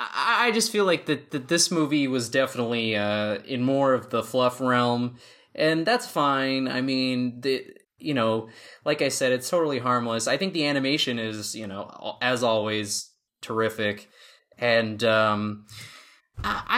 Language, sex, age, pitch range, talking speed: English, male, 20-39, 115-145 Hz, 155 wpm